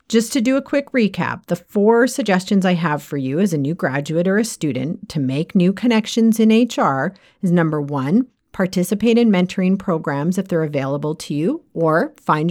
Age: 40-59